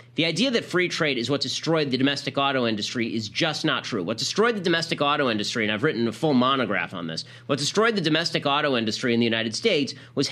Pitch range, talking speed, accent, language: 130-165 Hz, 240 wpm, American, English